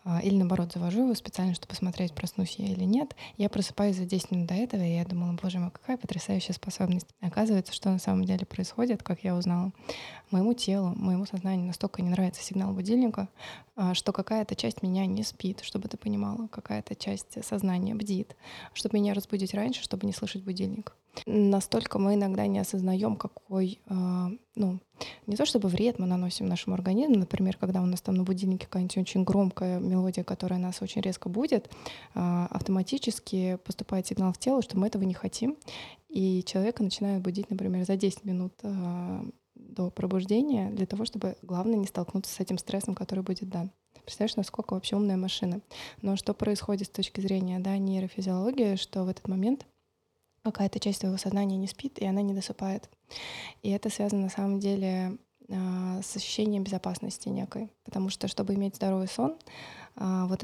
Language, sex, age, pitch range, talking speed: Russian, female, 20-39, 185-205 Hz, 175 wpm